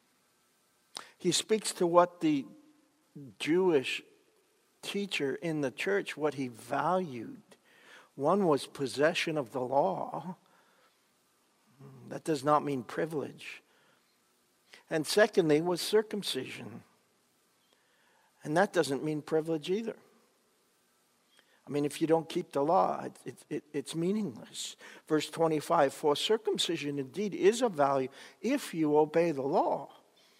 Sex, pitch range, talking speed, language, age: male, 145-215 Hz, 115 wpm, English, 60-79